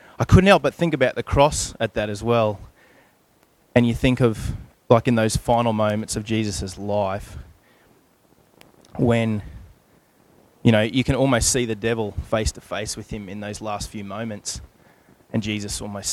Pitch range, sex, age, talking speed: 100-120 Hz, male, 20-39, 170 wpm